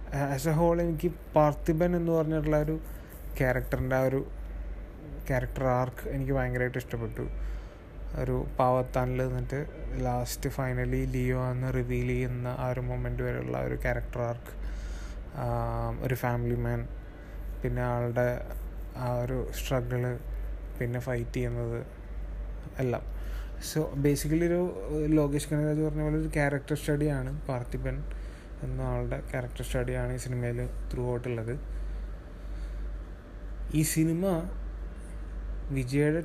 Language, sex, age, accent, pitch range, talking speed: Malayalam, male, 20-39, native, 120-140 Hz, 110 wpm